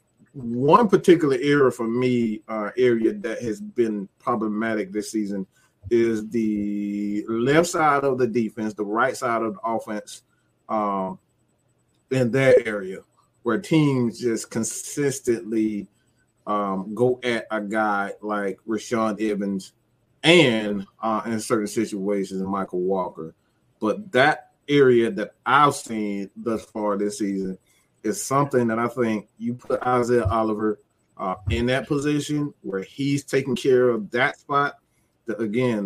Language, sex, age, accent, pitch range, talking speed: English, male, 30-49, American, 105-125 Hz, 135 wpm